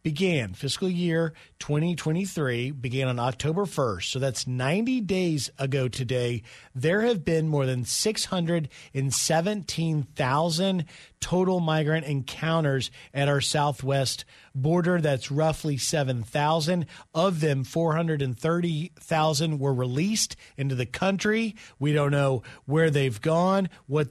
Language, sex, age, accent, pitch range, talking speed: English, male, 40-59, American, 135-165 Hz, 110 wpm